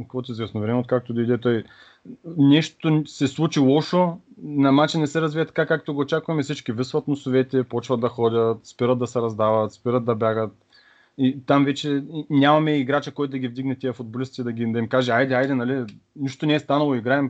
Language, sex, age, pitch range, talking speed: Bulgarian, male, 30-49, 120-140 Hz, 200 wpm